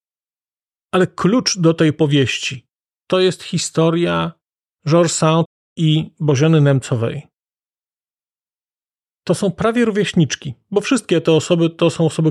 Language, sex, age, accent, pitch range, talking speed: Polish, male, 40-59, native, 135-175 Hz, 115 wpm